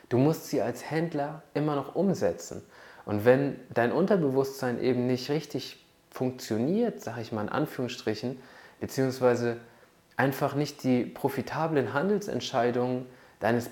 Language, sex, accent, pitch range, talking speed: German, male, German, 115-140 Hz, 125 wpm